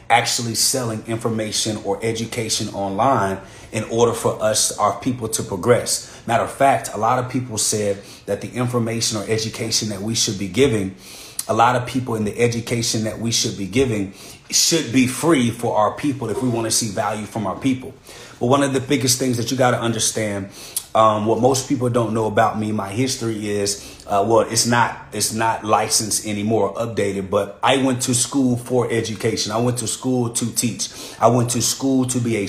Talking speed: 200 wpm